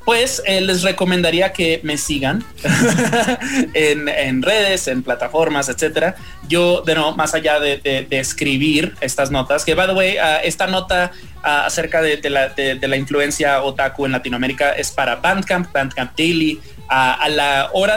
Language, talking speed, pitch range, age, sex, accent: English, 175 wpm, 135-170 Hz, 20-39, male, Mexican